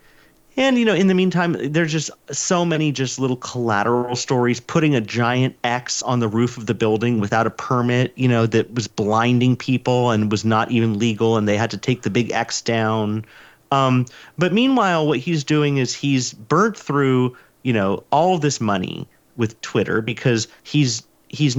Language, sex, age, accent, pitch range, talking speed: English, male, 40-59, American, 115-155 Hz, 185 wpm